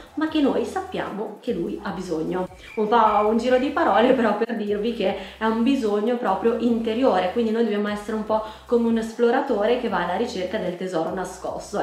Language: Italian